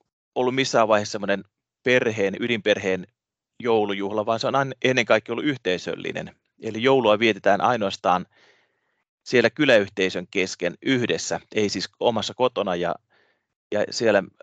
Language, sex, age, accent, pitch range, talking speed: Finnish, male, 30-49, native, 100-120 Hz, 110 wpm